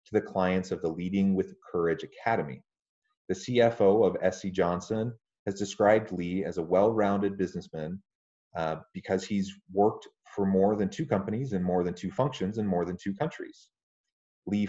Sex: male